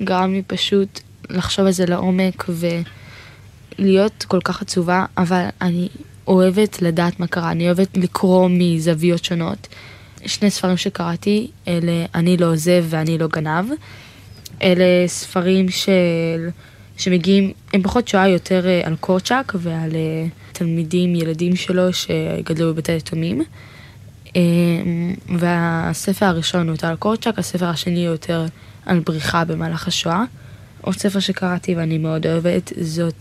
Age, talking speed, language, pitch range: 20-39, 125 wpm, Hebrew, 165-185 Hz